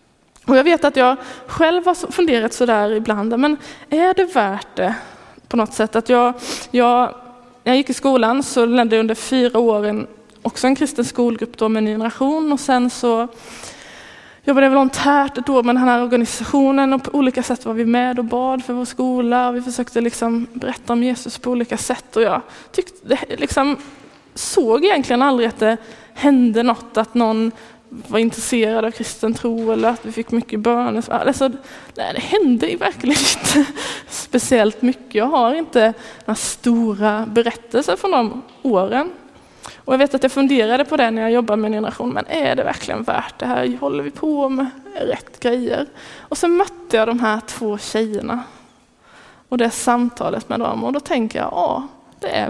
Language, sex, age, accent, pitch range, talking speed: Swedish, female, 20-39, native, 230-270 Hz, 185 wpm